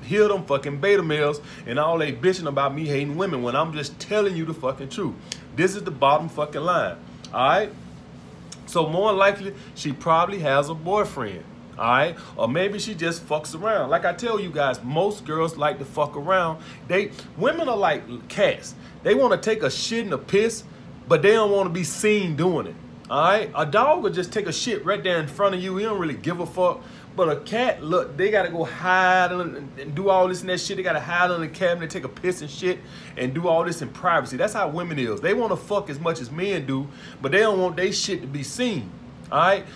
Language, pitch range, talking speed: English, 150-195 Hz, 240 wpm